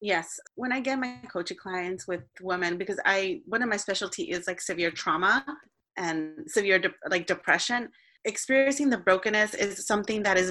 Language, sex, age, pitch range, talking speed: English, female, 30-49, 175-210 Hz, 175 wpm